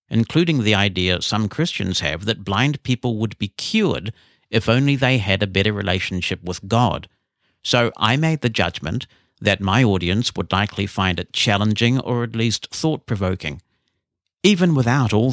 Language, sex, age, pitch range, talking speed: English, male, 60-79, 95-120 Hz, 160 wpm